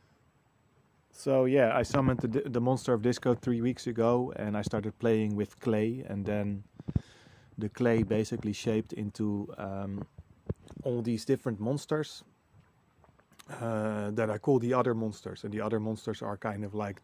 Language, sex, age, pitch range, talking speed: English, male, 30-49, 105-120 Hz, 160 wpm